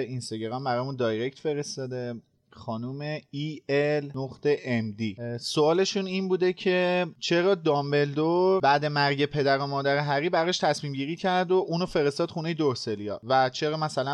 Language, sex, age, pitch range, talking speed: Persian, male, 30-49, 125-160 Hz, 155 wpm